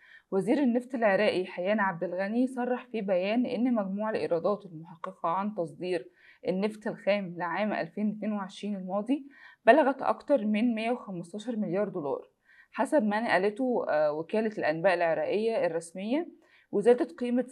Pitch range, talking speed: 185-245 Hz, 120 wpm